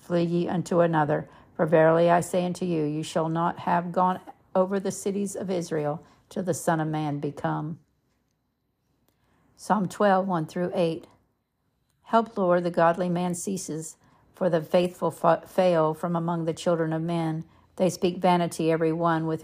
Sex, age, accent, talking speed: female, 50-69, American, 160 wpm